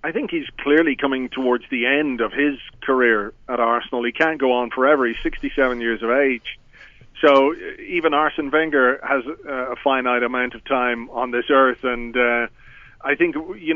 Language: English